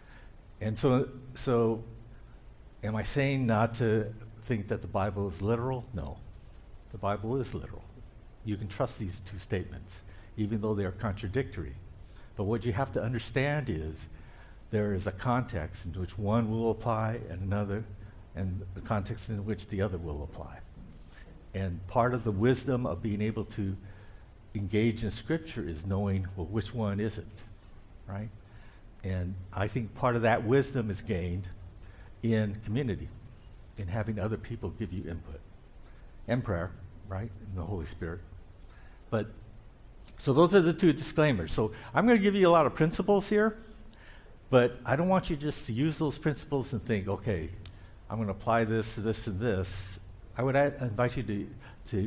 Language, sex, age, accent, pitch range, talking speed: English, male, 60-79, American, 95-125 Hz, 170 wpm